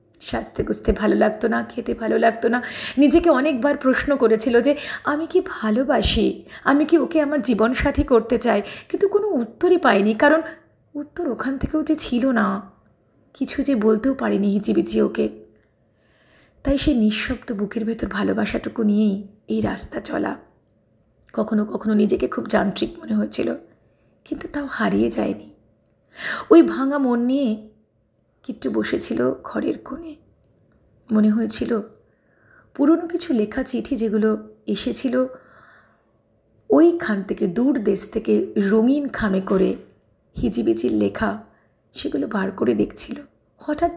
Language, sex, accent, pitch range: Bengali, female, native, 210-285 Hz